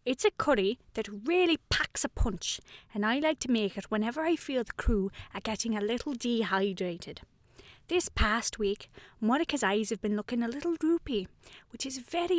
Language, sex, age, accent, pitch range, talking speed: English, female, 30-49, British, 205-285 Hz, 185 wpm